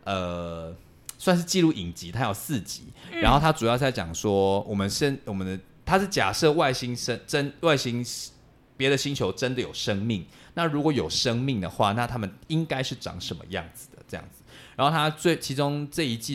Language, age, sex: Chinese, 20-39, male